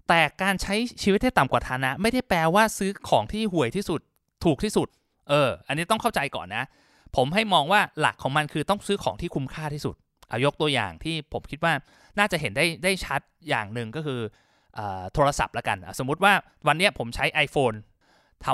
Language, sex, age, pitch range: Thai, male, 20-39, 125-175 Hz